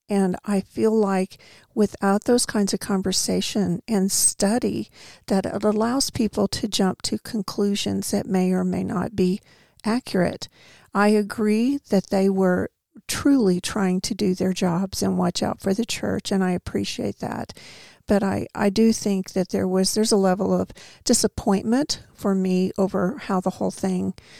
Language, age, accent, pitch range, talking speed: English, 50-69, American, 190-220 Hz, 165 wpm